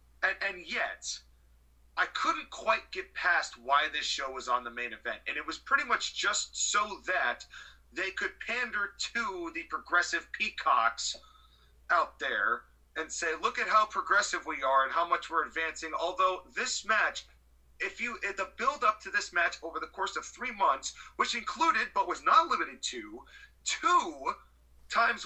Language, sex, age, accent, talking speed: English, male, 30-49, American, 170 wpm